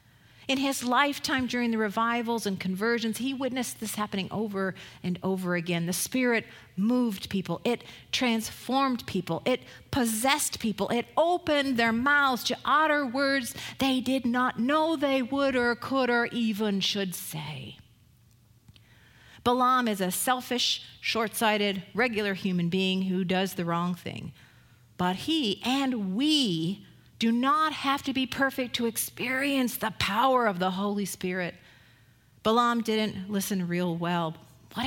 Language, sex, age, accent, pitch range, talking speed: English, female, 50-69, American, 180-250 Hz, 140 wpm